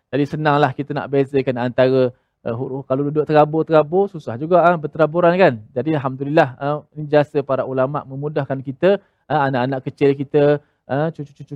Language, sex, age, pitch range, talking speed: Malayalam, male, 20-39, 135-160 Hz, 130 wpm